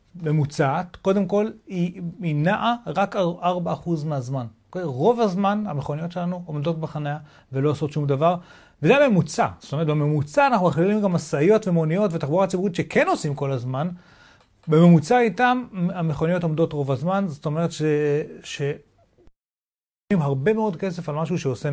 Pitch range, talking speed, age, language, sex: 140-180 Hz, 145 wpm, 30-49, Hebrew, male